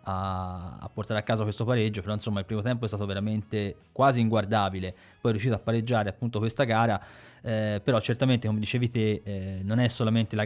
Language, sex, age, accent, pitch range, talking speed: Italian, male, 20-39, native, 105-125 Hz, 200 wpm